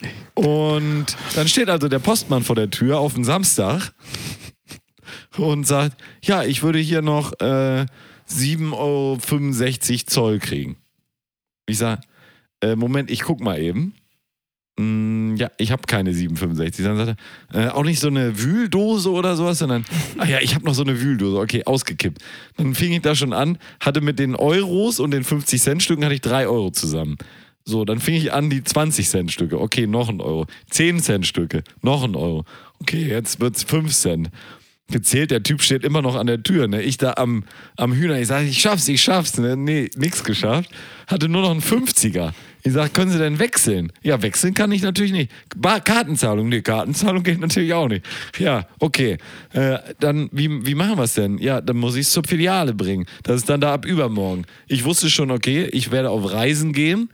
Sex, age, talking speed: male, 40-59, 190 wpm